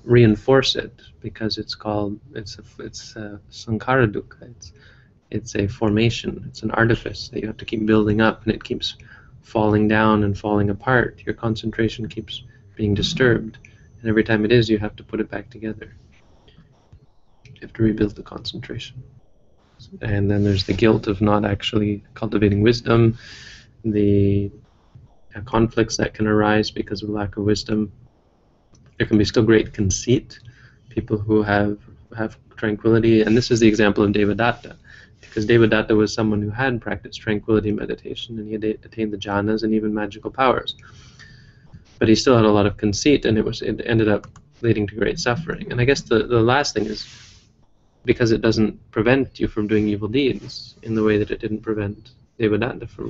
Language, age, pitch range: English, 20-39, 105-115 Hz